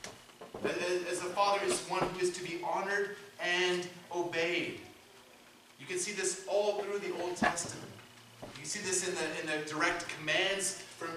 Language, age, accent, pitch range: English, 30-49, American, 160-190 Hz